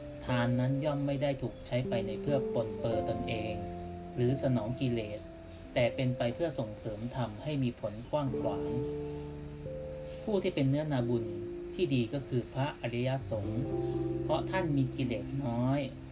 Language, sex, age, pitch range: Thai, male, 30-49, 105-140 Hz